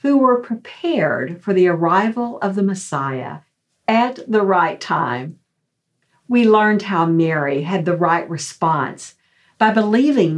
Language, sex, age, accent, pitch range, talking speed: English, female, 50-69, American, 165-205 Hz, 135 wpm